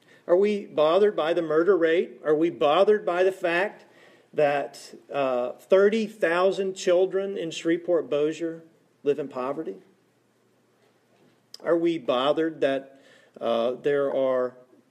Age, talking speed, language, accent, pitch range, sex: 40-59, 115 wpm, English, American, 140-195 Hz, male